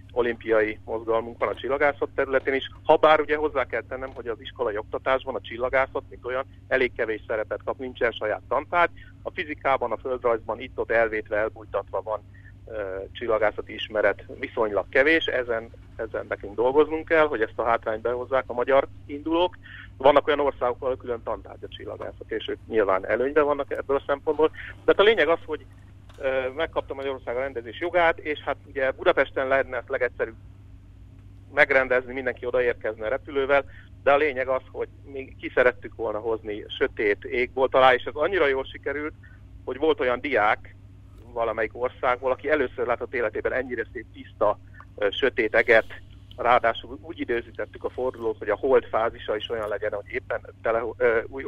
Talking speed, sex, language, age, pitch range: 160 wpm, male, Hungarian, 50-69, 110-165 Hz